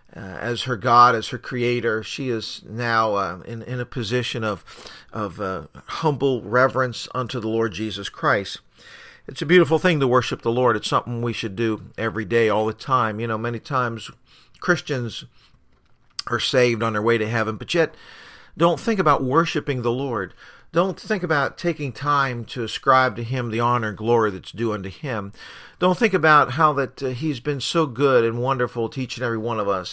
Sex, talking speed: male, 195 wpm